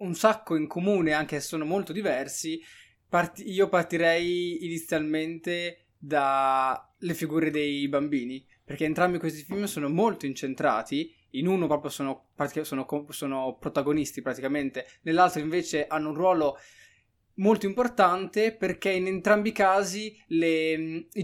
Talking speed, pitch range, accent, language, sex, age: 120 wpm, 150-185 Hz, native, Italian, male, 20-39